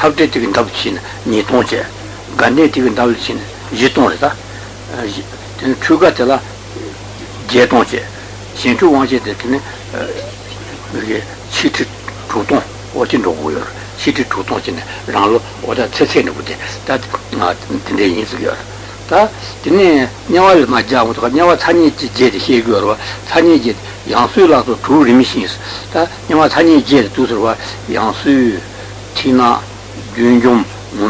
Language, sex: Italian, male